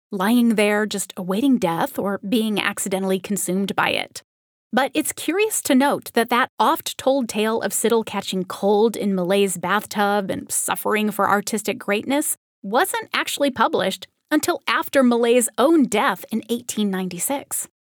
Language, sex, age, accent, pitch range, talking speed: English, female, 30-49, American, 200-260 Hz, 140 wpm